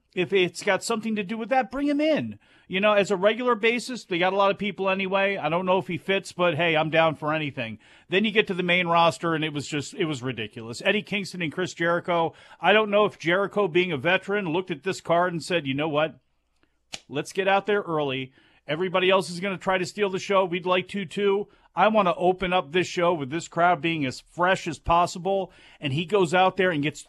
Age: 40-59